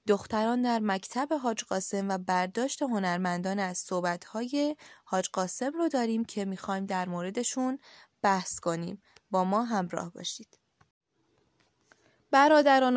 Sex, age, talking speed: female, 20-39, 115 wpm